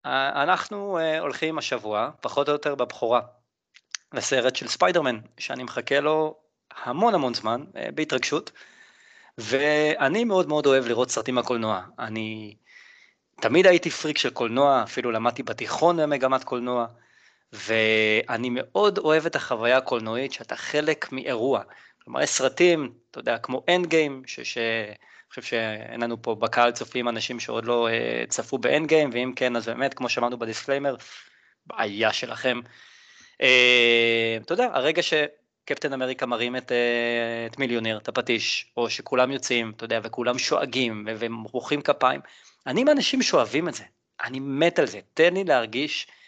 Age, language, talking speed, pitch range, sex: 20-39, Hebrew, 140 wpm, 115-150 Hz, male